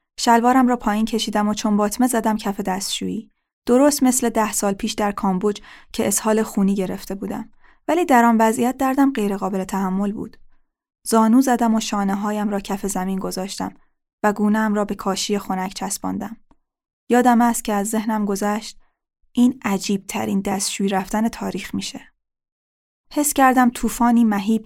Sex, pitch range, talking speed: female, 200-235 Hz, 150 wpm